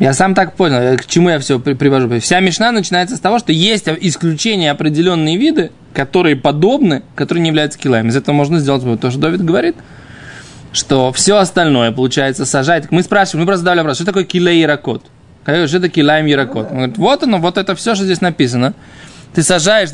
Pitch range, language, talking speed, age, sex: 145-185 Hz, Russian, 185 wpm, 20-39, male